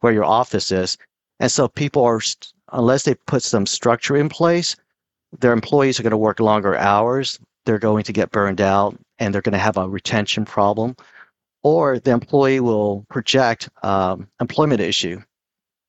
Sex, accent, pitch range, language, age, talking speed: male, American, 100-125 Hz, English, 50-69, 170 wpm